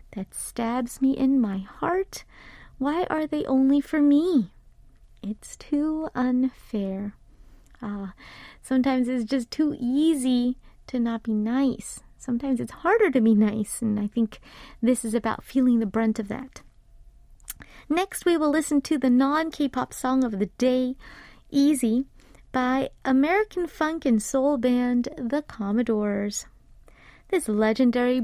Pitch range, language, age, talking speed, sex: 230-290 Hz, English, 30-49, 135 wpm, female